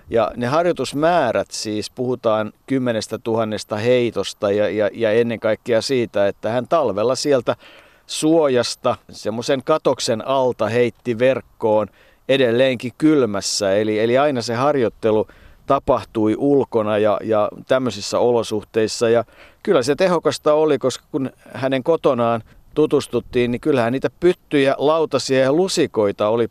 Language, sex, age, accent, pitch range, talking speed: Finnish, male, 50-69, native, 115-140 Hz, 120 wpm